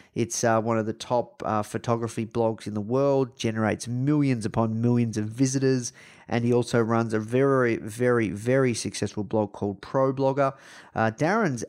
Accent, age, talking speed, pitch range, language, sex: Australian, 30-49, 165 wpm, 110-135 Hz, English, male